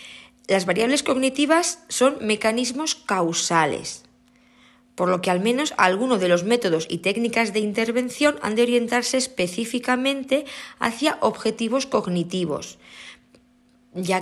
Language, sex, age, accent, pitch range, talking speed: Spanish, female, 20-39, Spanish, 180-255 Hz, 115 wpm